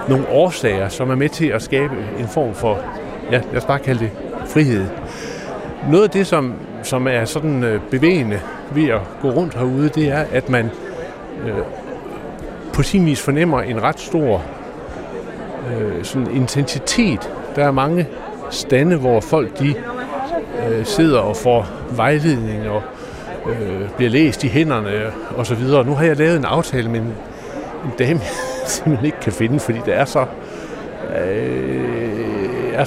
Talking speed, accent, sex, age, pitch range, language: 150 wpm, native, male, 60-79, 110-150 Hz, Danish